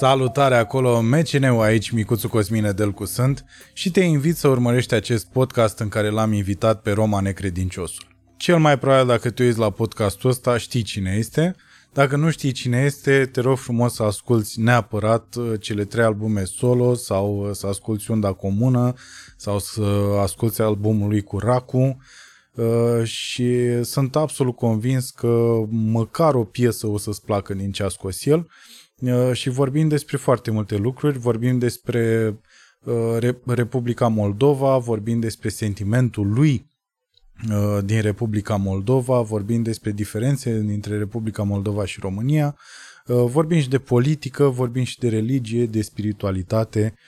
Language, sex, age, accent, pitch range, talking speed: Romanian, male, 20-39, native, 105-125 Hz, 140 wpm